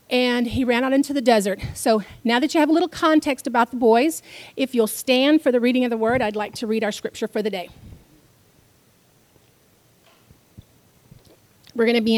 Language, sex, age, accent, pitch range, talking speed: English, female, 40-59, American, 205-260 Hz, 195 wpm